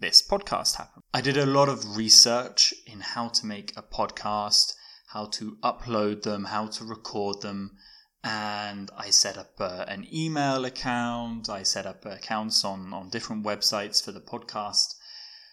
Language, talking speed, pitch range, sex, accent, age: English, 160 wpm, 105-160 Hz, male, British, 20-39